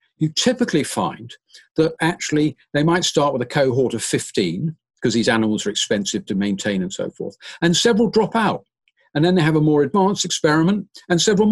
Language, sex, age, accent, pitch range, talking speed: English, male, 50-69, British, 130-190 Hz, 195 wpm